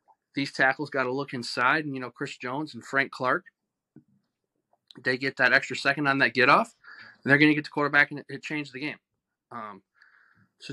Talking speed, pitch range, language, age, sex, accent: 205 wpm, 120-145 Hz, English, 20-39, male, American